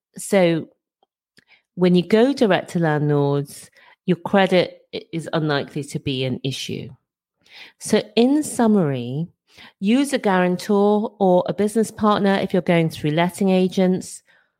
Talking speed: 125 wpm